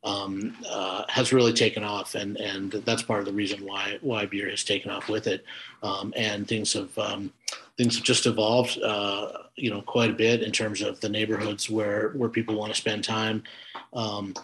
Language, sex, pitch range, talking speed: English, male, 105-120 Hz, 200 wpm